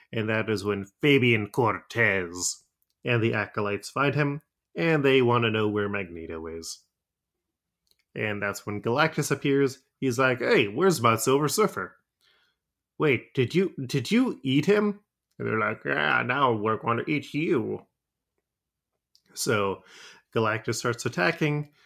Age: 30-49